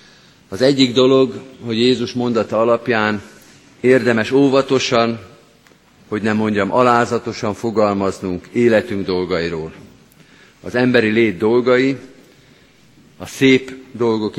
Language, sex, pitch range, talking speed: Hungarian, male, 100-125 Hz, 95 wpm